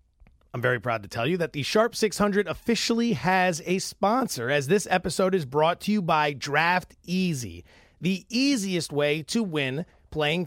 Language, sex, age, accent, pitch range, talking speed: English, male, 30-49, American, 155-210 Hz, 170 wpm